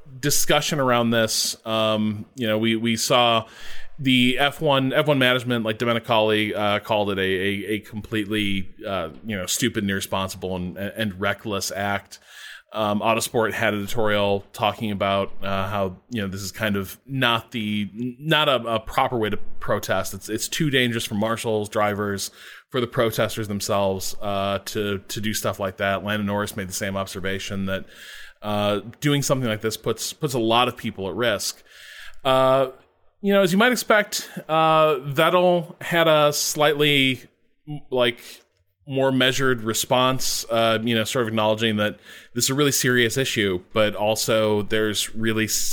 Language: English